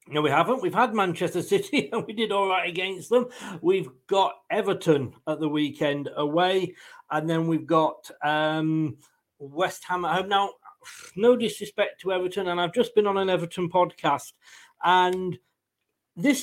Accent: British